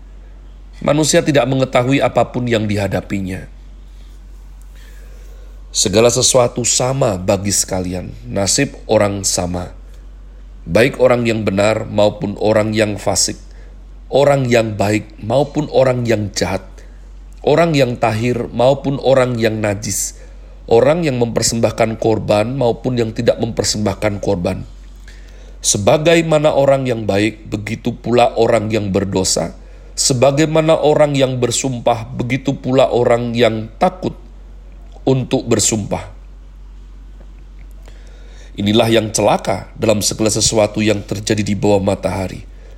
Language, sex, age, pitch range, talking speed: Indonesian, male, 40-59, 100-125 Hz, 110 wpm